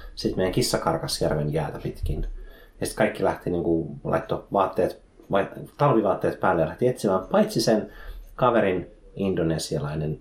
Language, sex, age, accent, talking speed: Finnish, male, 30-49, native, 135 wpm